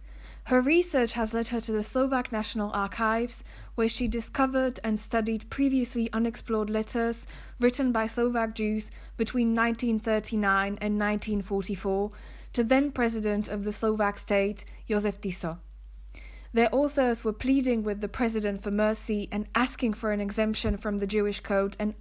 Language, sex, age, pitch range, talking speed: Slovak, female, 20-39, 205-245 Hz, 145 wpm